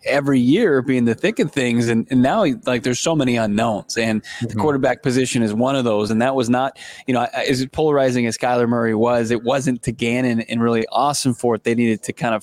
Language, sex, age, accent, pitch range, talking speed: English, male, 20-39, American, 115-130 Hz, 240 wpm